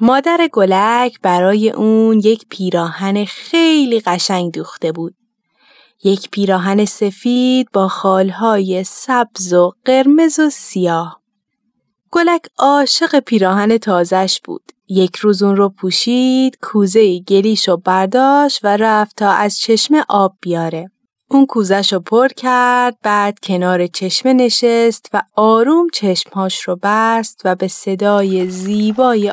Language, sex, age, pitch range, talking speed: Persian, female, 20-39, 190-245 Hz, 120 wpm